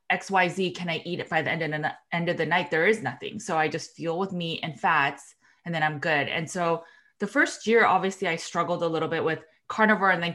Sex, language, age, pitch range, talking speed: female, English, 20-39, 160-190 Hz, 265 wpm